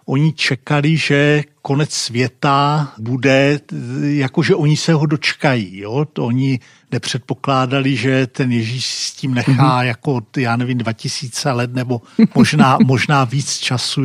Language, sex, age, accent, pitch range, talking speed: Czech, male, 50-69, native, 125-145 Hz, 130 wpm